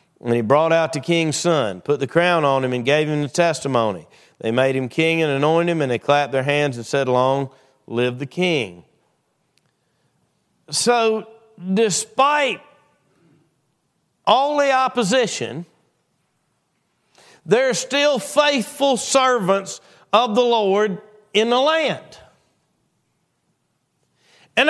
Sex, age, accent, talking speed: male, 50-69, American, 125 wpm